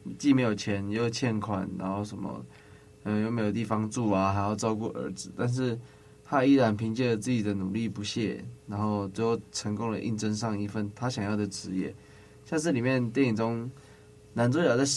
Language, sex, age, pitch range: Chinese, male, 20-39, 100-120 Hz